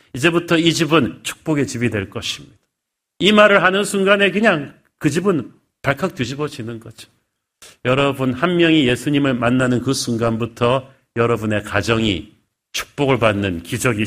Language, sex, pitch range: Korean, male, 120-160 Hz